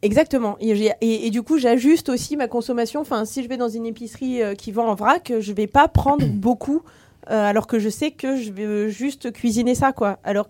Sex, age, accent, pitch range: female, 20-39, French, 205-250 Hz